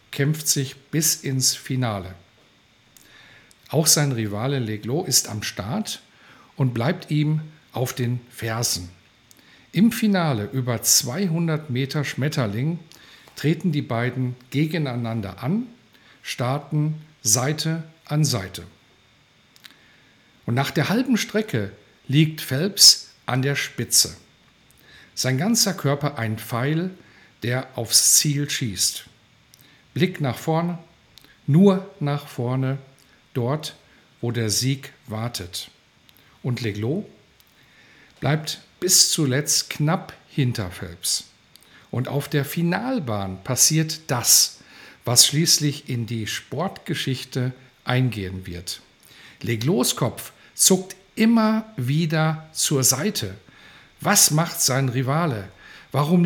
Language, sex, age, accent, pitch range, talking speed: German, male, 50-69, German, 120-160 Hz, 100 wpm